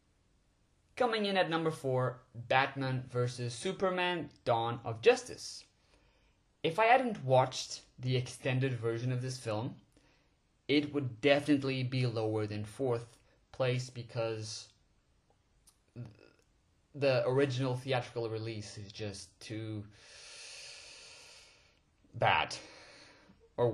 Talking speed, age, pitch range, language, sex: 100 wpm, 20-39, 110-130 Hz, English, male